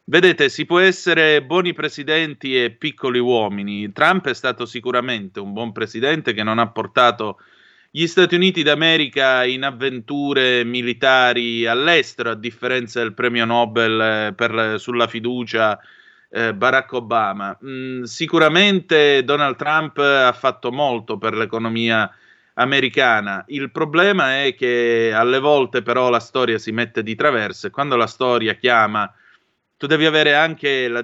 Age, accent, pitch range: 30-49, native, 115-145 Hz